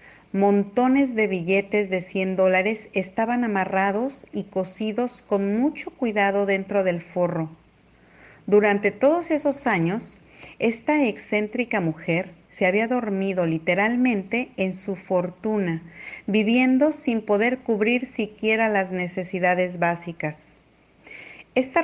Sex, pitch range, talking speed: female, 185-235 Hz, 105 wpm